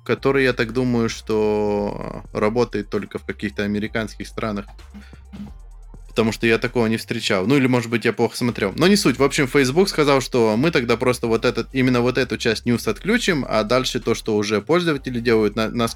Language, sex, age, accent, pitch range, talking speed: Russian, male, 20-39, native, 110-130 Hz, 190 wpm